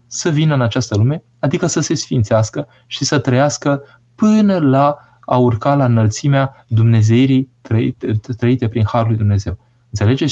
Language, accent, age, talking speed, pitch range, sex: Romanian, native, 20-39, 145 wpm, 110-130 Hz, male